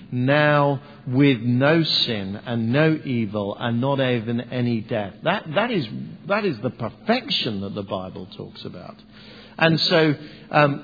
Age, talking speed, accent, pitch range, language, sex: 50-69, 150 wpm, British, 110-150 Hz, English, male